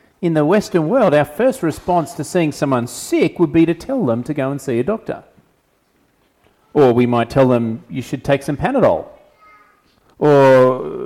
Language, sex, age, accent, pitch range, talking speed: English, male, 40-59, Australian, 130-190 Hz, 180 wpm